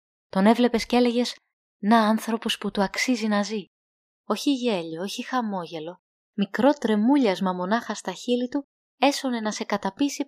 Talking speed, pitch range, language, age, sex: 145 wpm, 190-240 Hz, Greek, 20-39, female